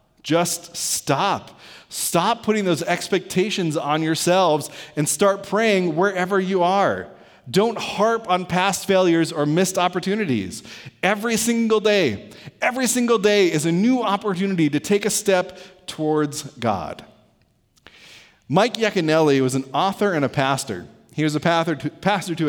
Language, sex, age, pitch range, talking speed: English, male, 30-49, 135-190 Hz, 135 wpm